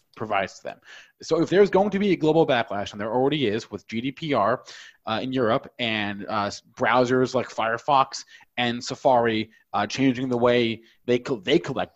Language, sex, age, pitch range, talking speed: English, male, 20-39, 120-160 Hz, 180 wpm